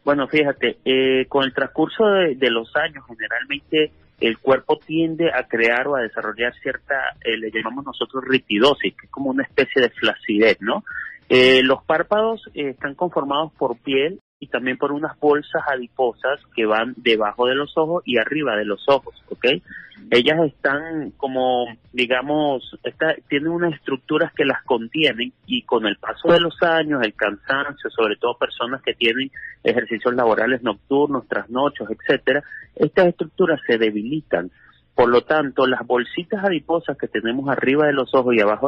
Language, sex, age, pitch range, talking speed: Spanish, male, 30-49, 125-160 Hz, 165 wpm